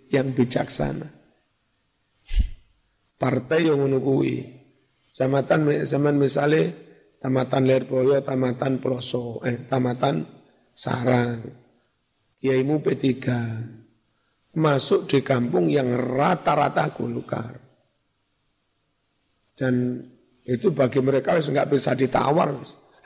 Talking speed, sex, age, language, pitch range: 80 wpm, male, 50-69, Indonesian, 130-145 Hz